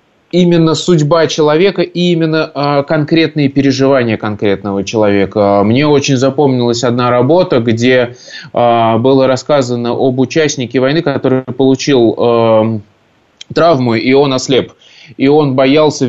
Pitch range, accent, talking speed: 120-140 Hz, native, 120 wpm